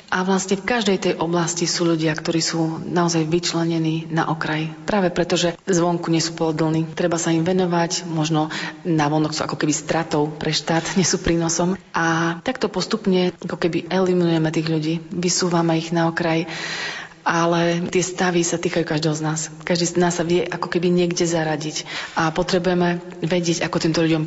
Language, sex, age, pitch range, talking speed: Slovak, female, 30-49, 160-175 Hz, 175 wpm